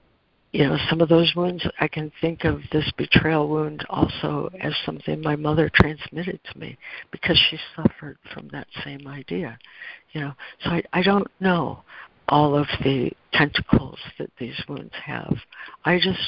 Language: English